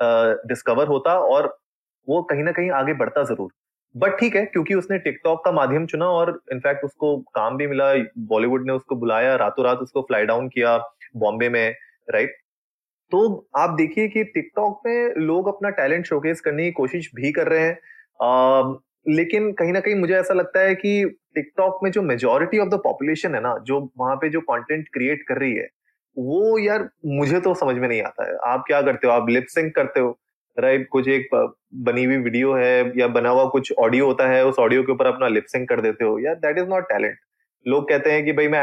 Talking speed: 215 wpm